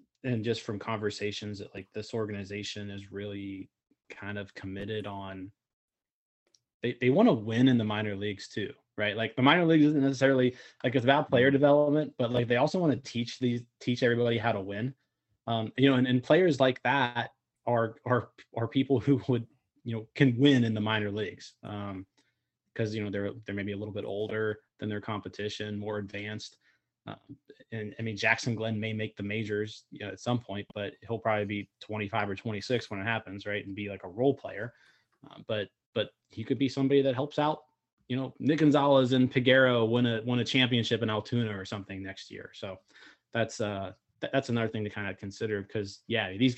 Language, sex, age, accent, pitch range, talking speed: English, male, 20-39, American, 105-130 Hz, 205 wpm